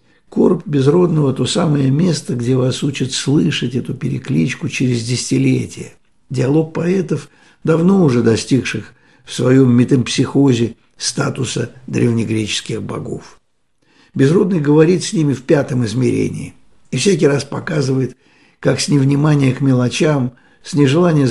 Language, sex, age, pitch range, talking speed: Russian, male, 60-79, 125-155 Hz, 120 wpm